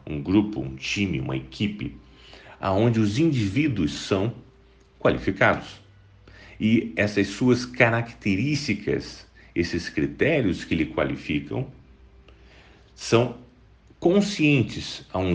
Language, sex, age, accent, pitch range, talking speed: Portuguese, male, 40-59, Brazilian, 80-125 Hz, 95 wpm